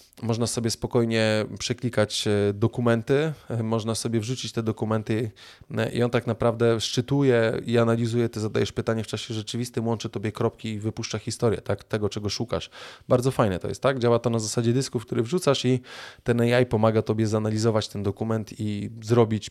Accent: native